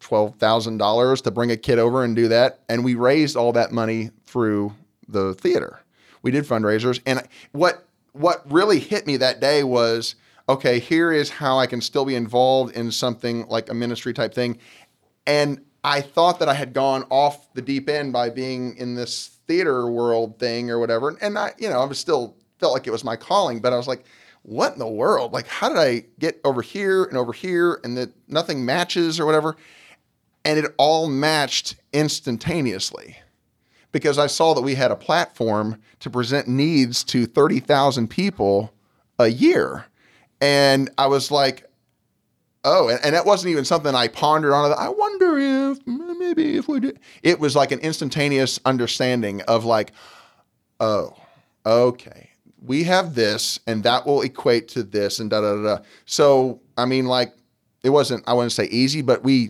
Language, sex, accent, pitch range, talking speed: English, male, American, 120-150 Hz, 185 wpm